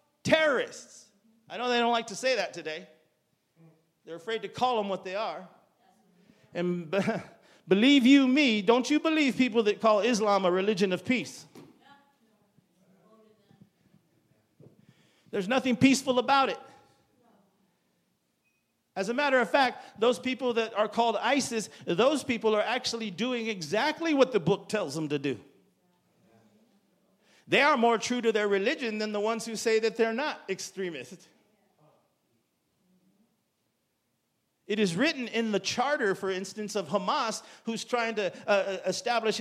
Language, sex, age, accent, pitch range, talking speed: English, male, 50-69, American, 200-255 Hz, 140 wpm